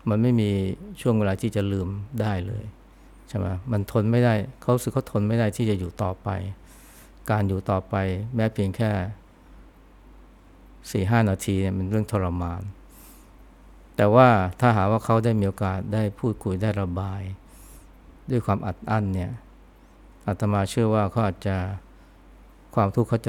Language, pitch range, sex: Thai, 95-110 Hz, male